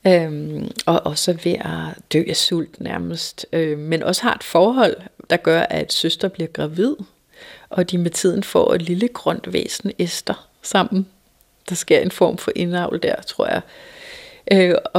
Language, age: Danish, 30-49